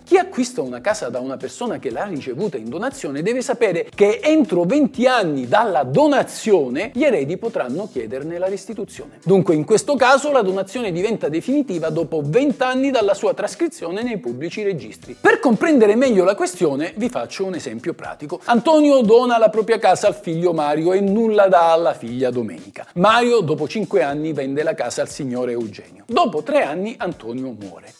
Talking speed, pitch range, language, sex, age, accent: 175 wpm, 160-255 Hz, Italian, male, 50-69, native